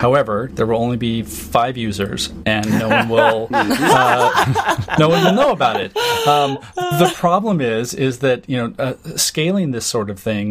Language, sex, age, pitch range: English, male, 30-49, 105-130 Hz